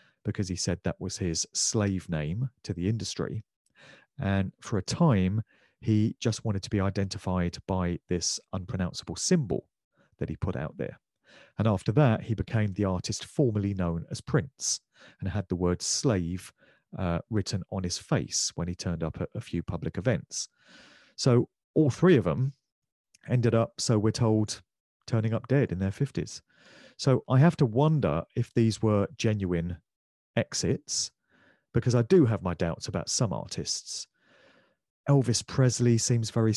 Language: English